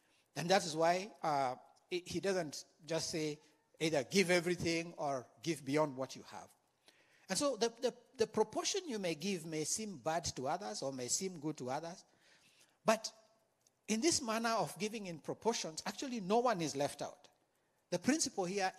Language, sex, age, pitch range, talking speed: English, male, 60-79, 140-195 Hz, 175 wpm